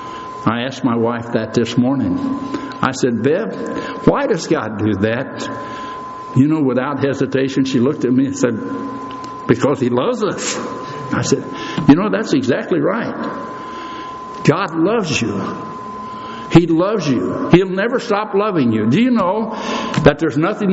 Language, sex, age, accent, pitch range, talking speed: English, male, 60-79, American, 145-230 Hz, 155 wpm